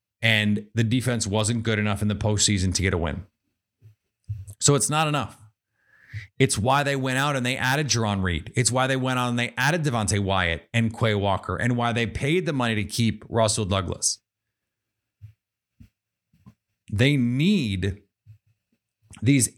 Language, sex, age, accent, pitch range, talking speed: English, male, 30-49, American, 110-150 Hz, 160 wpm